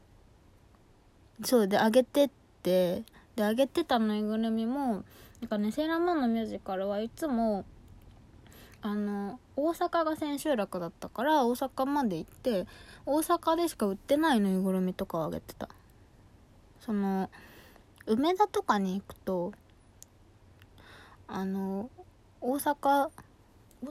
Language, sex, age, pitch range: Japanese, female, 20-39, 185-270 Hz